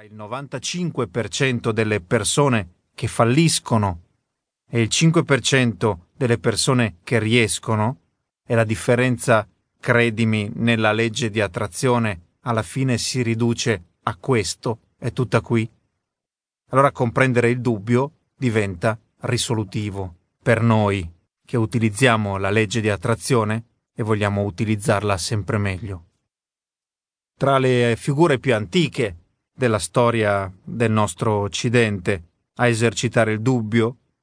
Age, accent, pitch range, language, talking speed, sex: 30-49, native, 105-125 Hz, Italian, 110 wpm, male